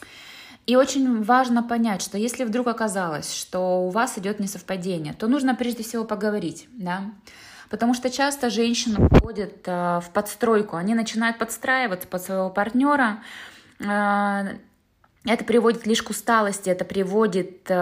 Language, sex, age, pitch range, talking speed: Russian, female, 20-39, 190-235 Hz, 130 wpm